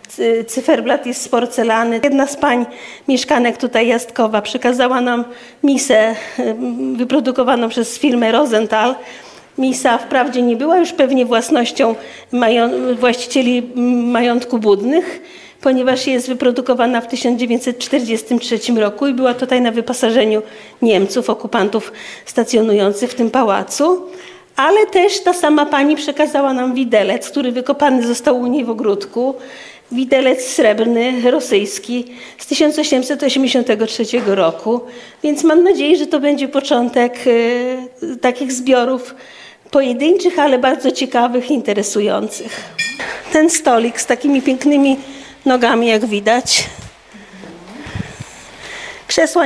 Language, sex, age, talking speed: Polish, female, 40-59, 110 wpm